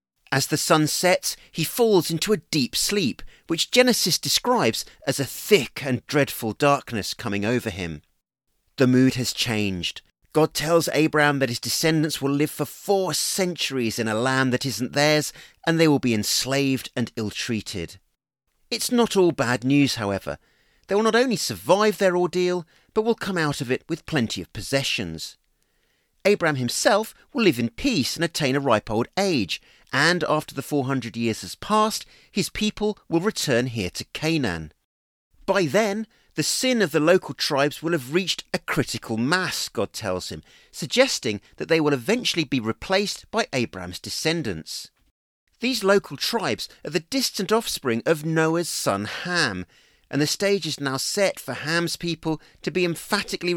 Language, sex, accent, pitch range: English, male, British, 120-180 Hz